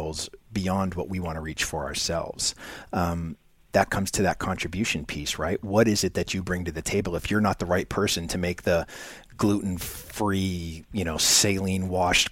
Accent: American